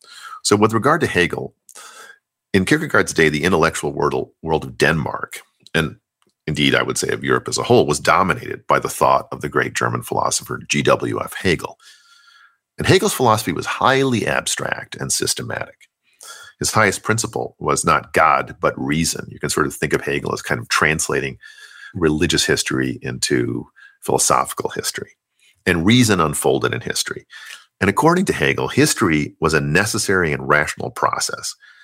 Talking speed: 155 wpm